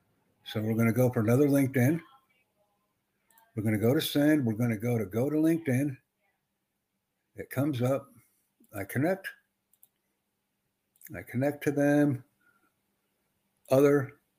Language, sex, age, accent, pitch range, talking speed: English, male, 60-79, American, 115-145 Hz, 135 wpm